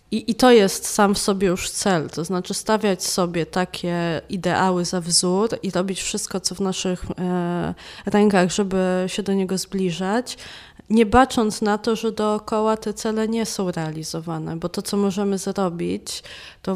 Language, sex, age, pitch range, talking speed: Polish, female, 20-39, 180-210 Hz, 165 wpm